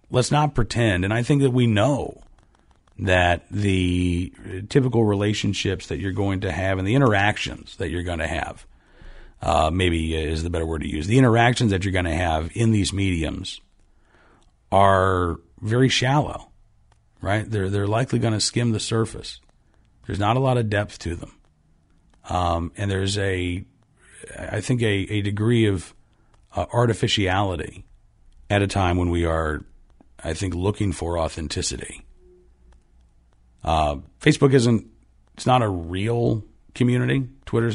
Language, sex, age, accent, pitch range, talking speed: English, male, 40-59, American, 85-110 Hz, 150 wpm